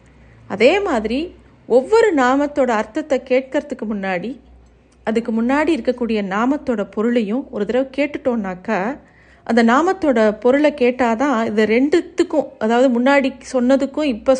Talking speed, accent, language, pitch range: 105 wpm, native, Tamil, 220-280 Hz